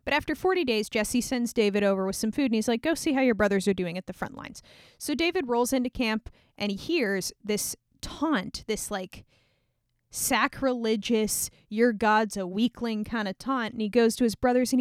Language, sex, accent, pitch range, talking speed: English, female, American, 200-275 Hz, 210 wpm